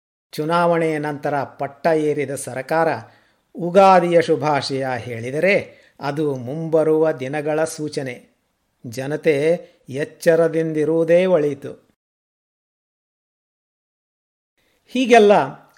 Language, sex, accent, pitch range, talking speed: Kannada, male, native, 130-170 Hz, 60 wpm